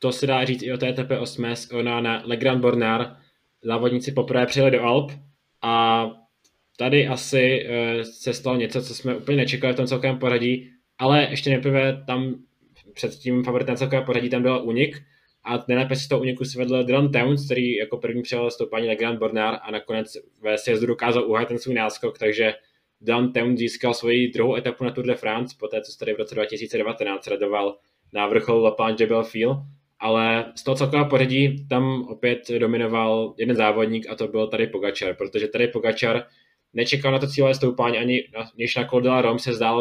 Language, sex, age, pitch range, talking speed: Czech, male, 10-29, 115-130 Hz, 185 wpm